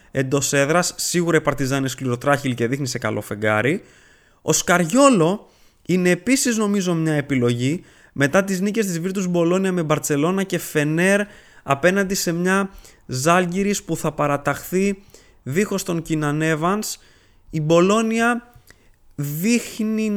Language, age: Greek, 20-39